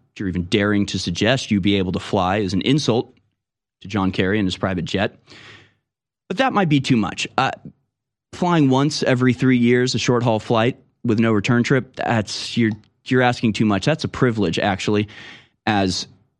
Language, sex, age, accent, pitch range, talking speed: English, male, 30-49, American, 110-145 Hz, 185 wpm